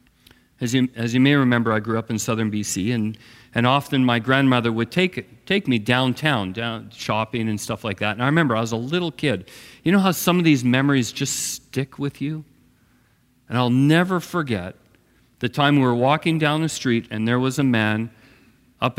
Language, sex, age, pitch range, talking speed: English, male, 50-69, 110-150 Hz, 200 wpm